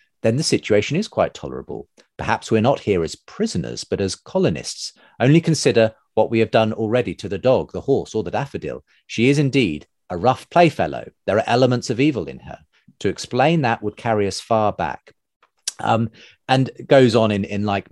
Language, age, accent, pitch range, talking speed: English, 40-59, British, 105-135 Hz, 195 wpm